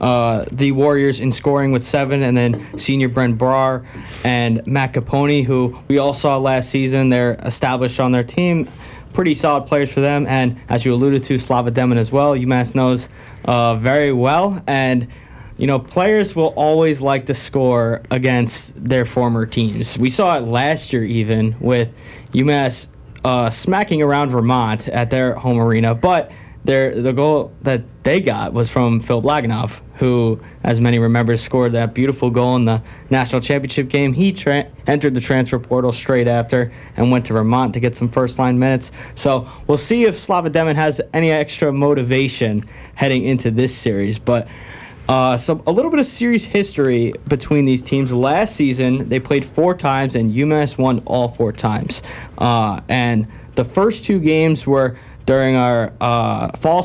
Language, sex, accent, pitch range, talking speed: English, male, American, 120-140 Hz, 175 wpm